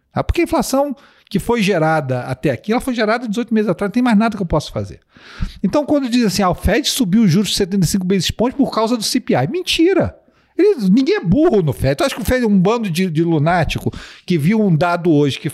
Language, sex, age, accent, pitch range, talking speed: English, male, 50-69, Brazilian, 135-205 Hz, 245 wpm